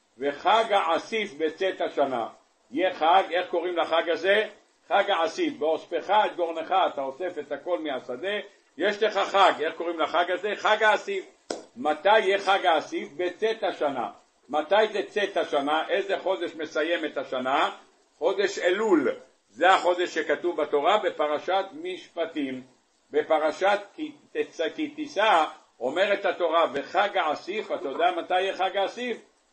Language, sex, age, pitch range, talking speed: Hebrew, male, 60-79, 160-210 Hz, 125 wpm